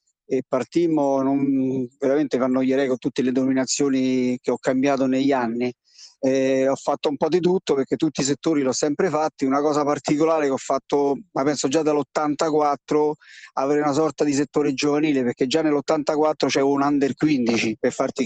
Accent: native